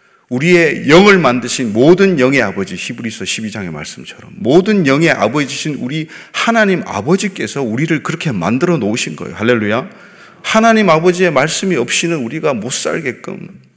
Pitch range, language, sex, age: 120-170 Hz, Korean, male, 40-59